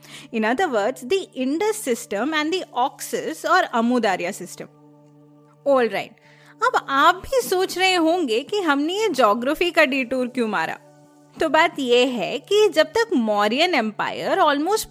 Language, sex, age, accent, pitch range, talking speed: Hindi, female, 30-49, native, 230-355 Hz, 95 wpm